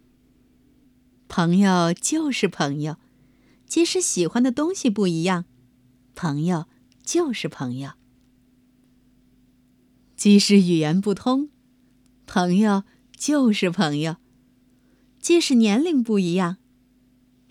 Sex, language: female, Chinese